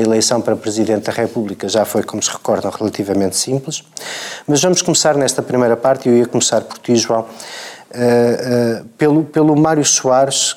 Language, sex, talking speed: Portuguese, male, 175 wpm